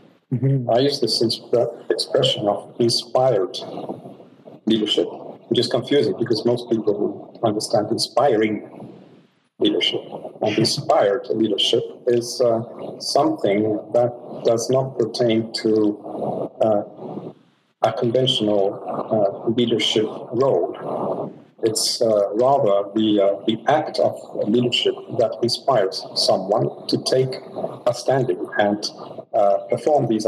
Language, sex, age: English, male, 50-69